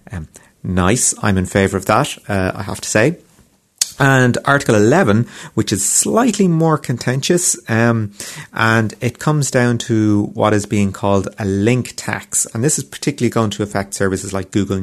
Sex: male